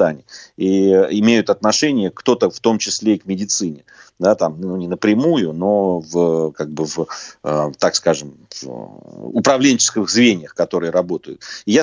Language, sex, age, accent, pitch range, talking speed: Russian, male, 30-49, native, 95-120 Hz, 115 wpm